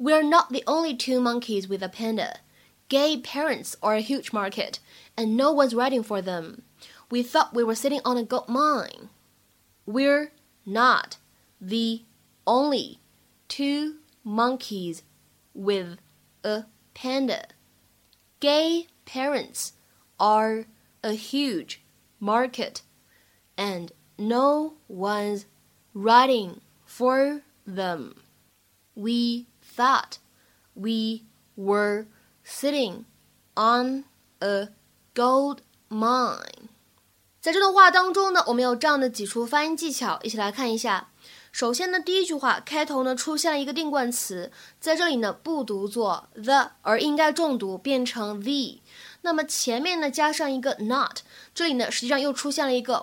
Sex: female